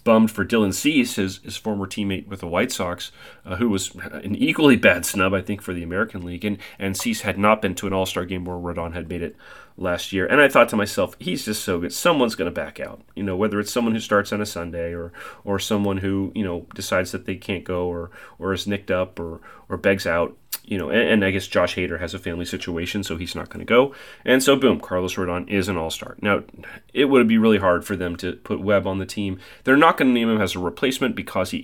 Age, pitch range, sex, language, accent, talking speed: 30-49, 90-105 Hz, male, English, American, 260 wpm